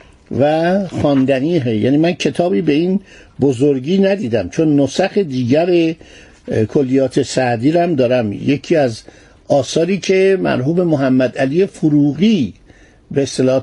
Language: Persian